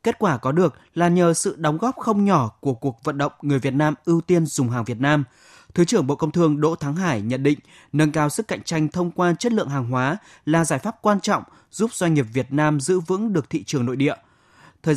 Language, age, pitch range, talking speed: Vietnamese, 20-39, 155-225 Hz, 255 wpm